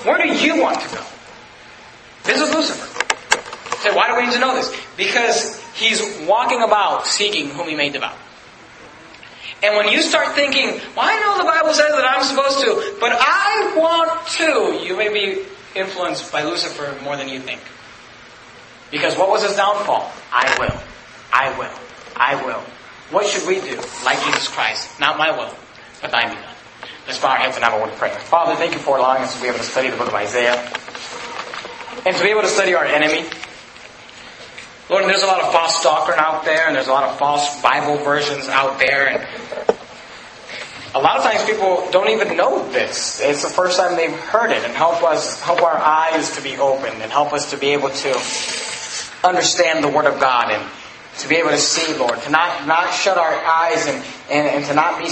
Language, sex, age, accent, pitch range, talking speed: English, male, 30-49, American, 145-235 Hz, 195 wpm